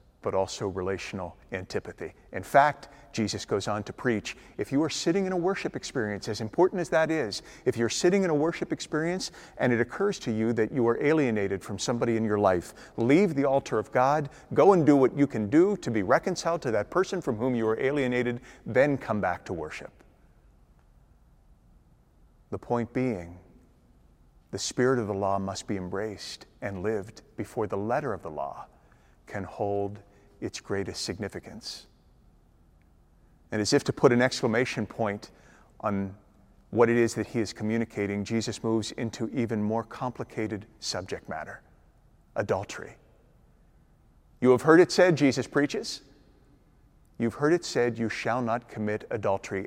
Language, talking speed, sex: English, 165 wpm, male